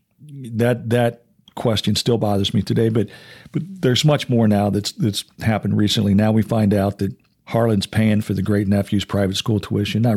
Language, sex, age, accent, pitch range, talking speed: English, male, 50-69, American, 100-110 Hz, 190 wpm